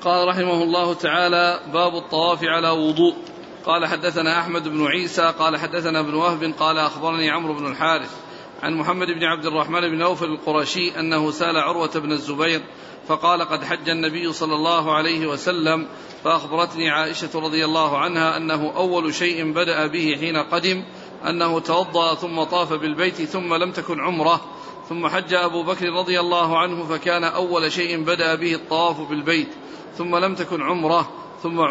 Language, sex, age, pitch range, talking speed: Arabic, male, 40-59, 160-175 Hz, 155 wpm